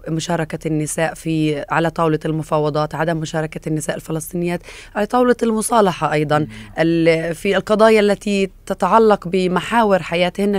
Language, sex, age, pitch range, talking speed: Arabic, female, 20-39, 155-180 Hz, 115 wpm